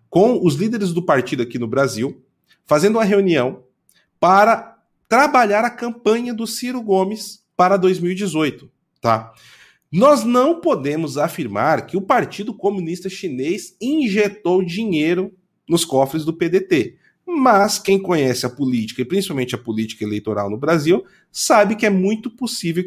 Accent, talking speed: Brazilian, 135 wpm